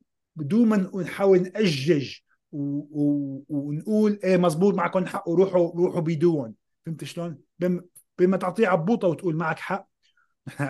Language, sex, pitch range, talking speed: Arabic, male, 160-195 Hz, 135 wpm